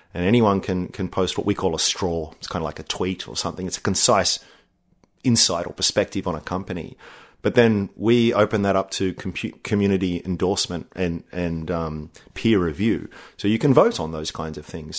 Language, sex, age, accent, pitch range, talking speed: English, male, 30-49, Australian, 90-105 Hz, 200 wpm